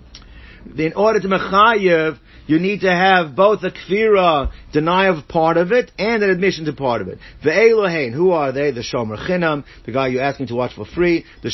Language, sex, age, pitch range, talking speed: English, male, 50-69, 145-190 Hz, 210 wpm